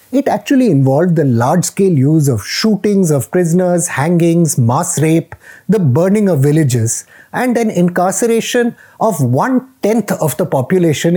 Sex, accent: male, Indian